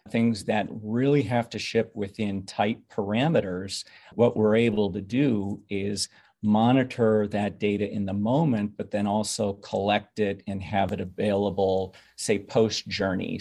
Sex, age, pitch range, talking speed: male, 40-59, 100-110 Hz, 150 wpm